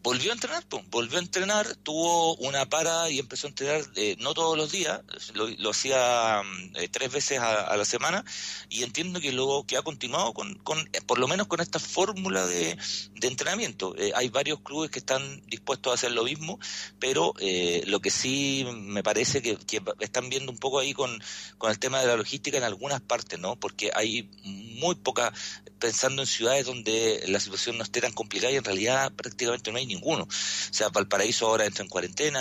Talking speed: 205 wpm